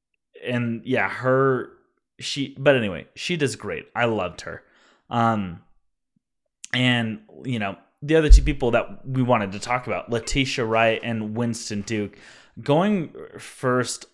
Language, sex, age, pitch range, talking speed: English, male, 20-39, 110-135 Hz, 140 wpm